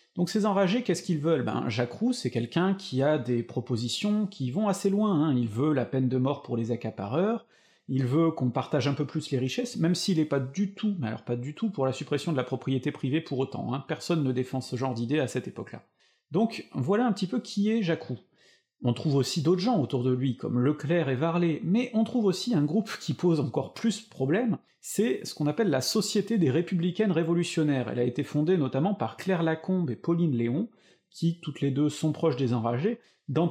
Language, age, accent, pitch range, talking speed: French, 40-59, French, 130-185 Hz, 230 wpm